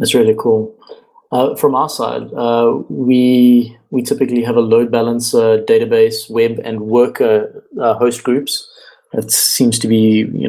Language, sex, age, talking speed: English, male, 20-39, 155 wpm